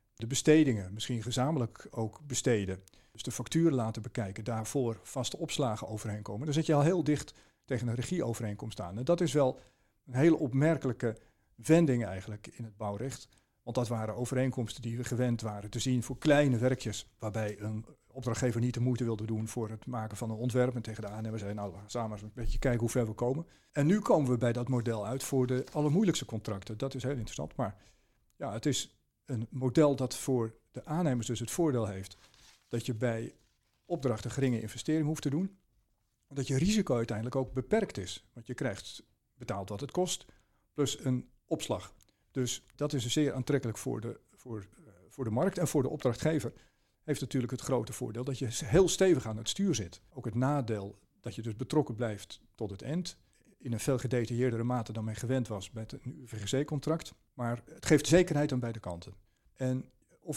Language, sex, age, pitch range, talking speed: Dutch, male, 50-69, 110-140 Hz, 190 wpm